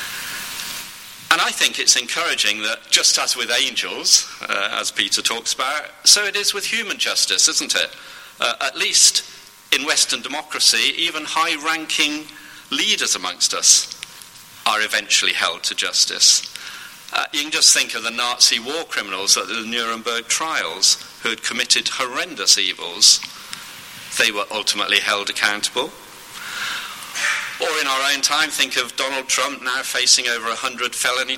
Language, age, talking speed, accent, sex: English, 40-59, 145 wpm, British, male